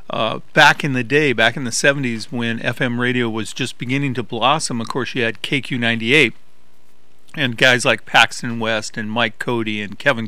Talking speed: 185 wpm